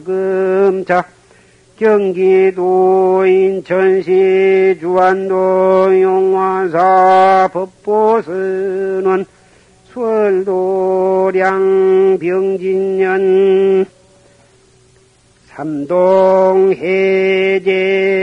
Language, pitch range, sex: Korean, 185-195 Hz, male